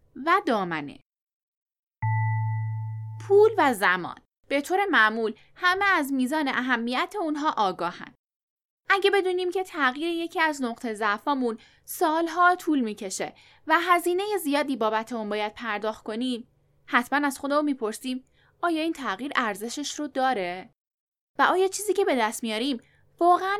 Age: 10-29